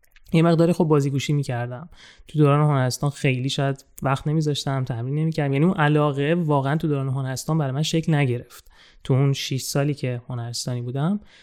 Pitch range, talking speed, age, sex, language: 130-155 Hz, 170 wpm, 20-39, male, Persian